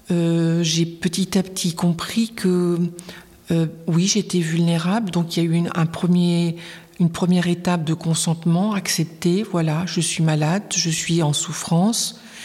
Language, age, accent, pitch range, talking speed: French, 50-69, French, 175-205 Hz, 160 wpm